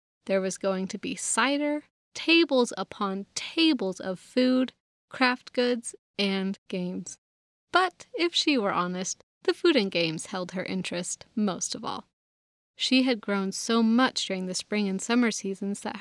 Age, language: 30-49, English